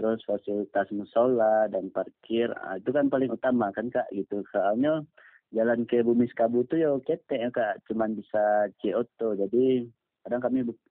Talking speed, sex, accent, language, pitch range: 165 wpm, male, native, Indonesian, 105-120 Hz